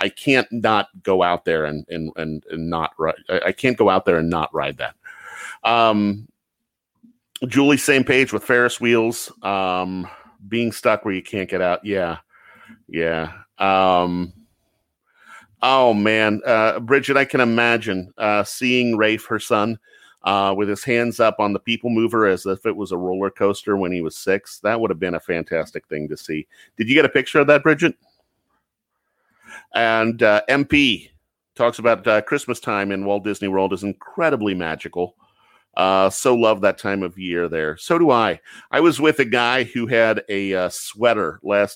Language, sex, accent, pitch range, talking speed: English, male, American, 90-115 Hz, 180 wpm